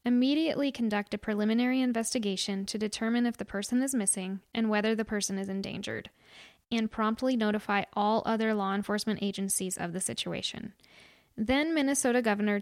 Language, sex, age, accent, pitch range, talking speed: English, female, 10-29, American, 200-235 Hz, 150 wpm